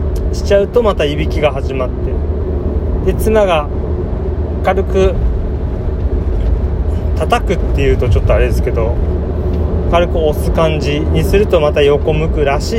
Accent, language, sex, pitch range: native, Japanese, male, 75-90 Hz